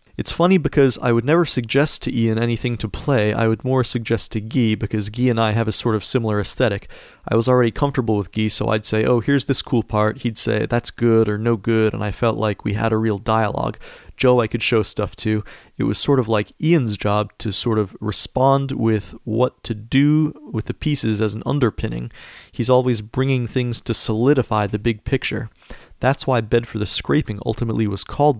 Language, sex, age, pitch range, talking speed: English, male, 30-49, 110-130 Hz, 220 wpm